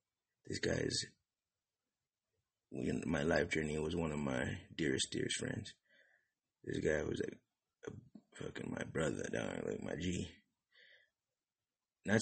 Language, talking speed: English, 120 wpm